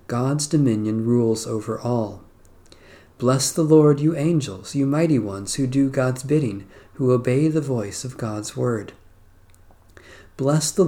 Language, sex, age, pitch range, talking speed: English, male, 40-59, 100-145 Hz, 145 wpm